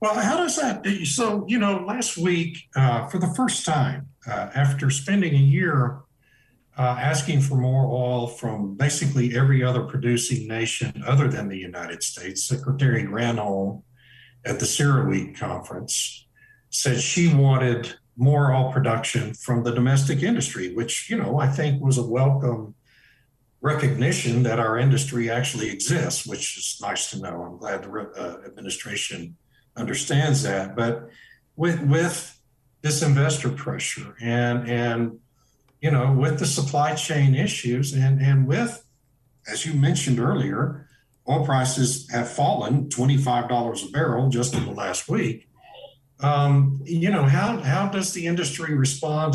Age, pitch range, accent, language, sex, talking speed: 60-79, 125-145 Hz, American, English, male, 150 wpm